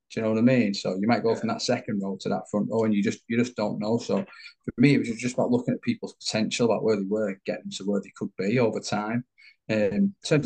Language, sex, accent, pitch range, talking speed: English, male, British, 100-125 Hz, 295 wpm